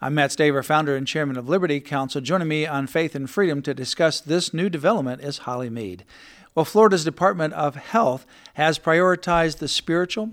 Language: English